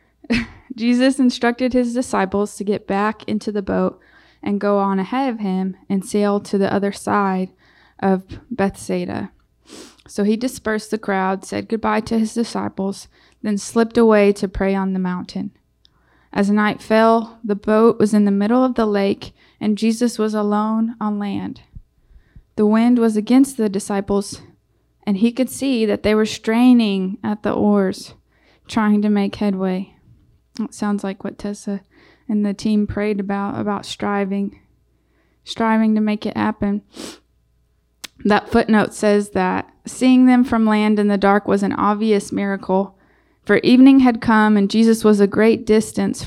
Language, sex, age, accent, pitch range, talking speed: English, female, 20-39, American, 195-220 Hz, 160 wpm